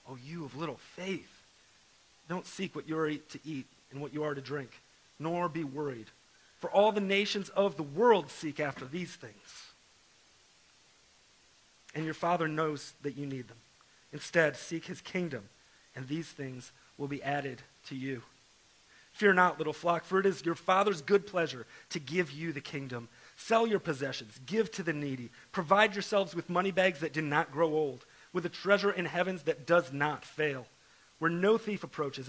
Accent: American